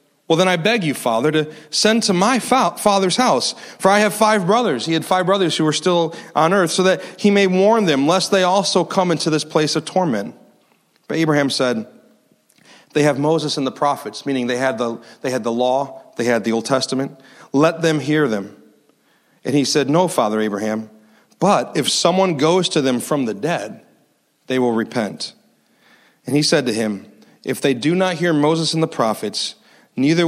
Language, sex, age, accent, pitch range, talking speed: English, male, 30-49, American, 130-175 Hz, 195 wpm